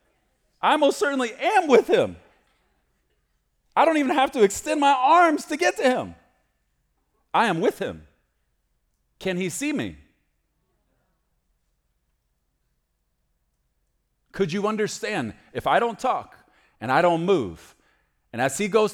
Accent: American